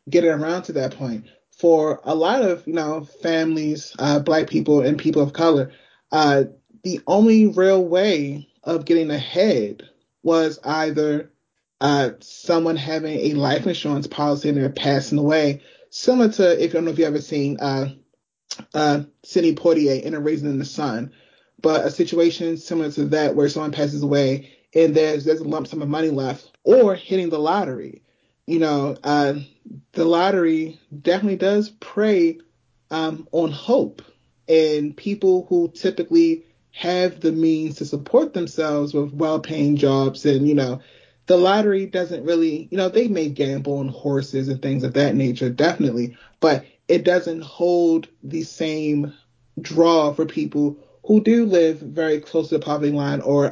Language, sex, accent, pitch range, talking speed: English, male, American, 145-170 Hz, 165 wpm